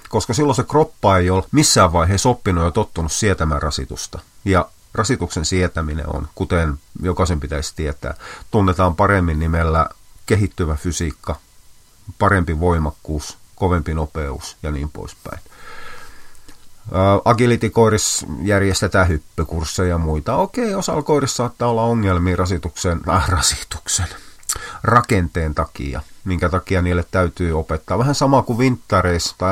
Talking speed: 120 wpm